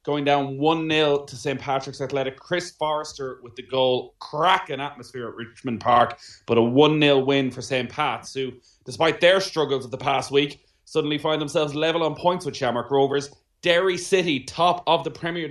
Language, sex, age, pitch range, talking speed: English, male, 30-49, 120-150 Hz, 180 wpm